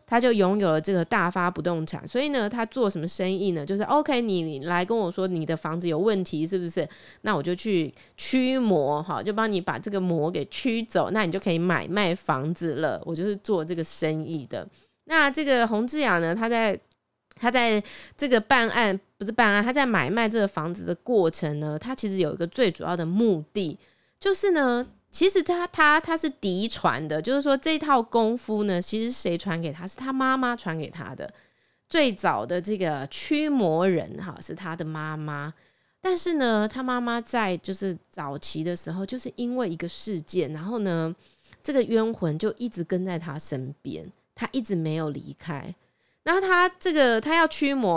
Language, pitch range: Chinese, 170-245 Hz